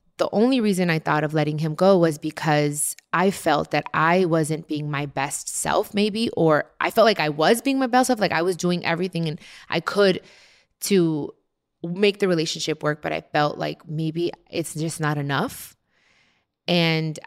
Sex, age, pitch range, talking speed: female, 20-39, 155-200 Hz, 190 wpm